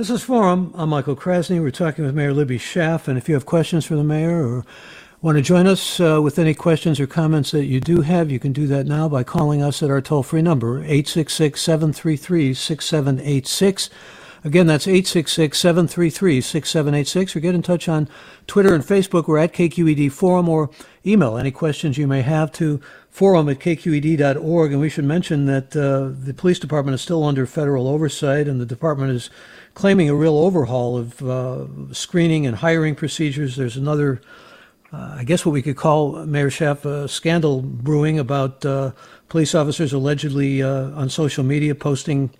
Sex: male